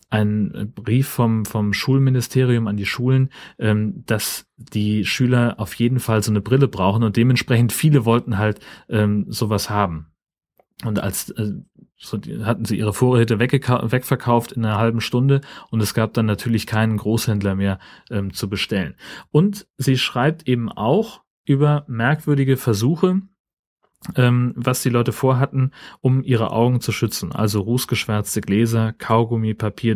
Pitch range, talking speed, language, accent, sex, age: 105-125 Hz, 150 wpm, German, German, male, 30-49